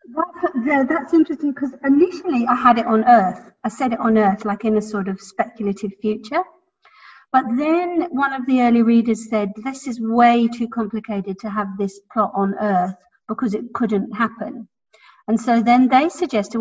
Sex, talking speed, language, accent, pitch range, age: female, 185 wpm, English, British, 205-260 Hz, 40-59